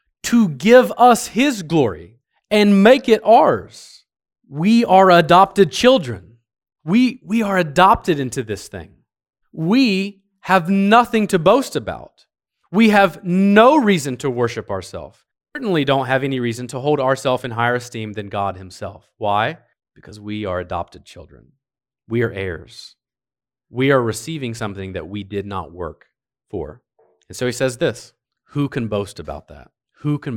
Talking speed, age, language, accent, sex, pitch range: 155 wpm, 30-49, English, American, male, 100-140 Hz